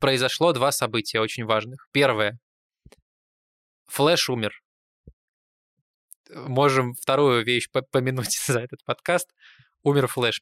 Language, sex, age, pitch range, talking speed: Russian, male, 20-39, 115-140 Hz, 100 wpm